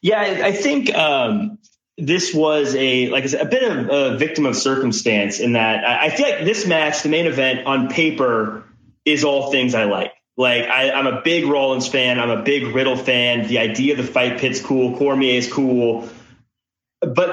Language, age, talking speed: English, 30-49, 195 wpm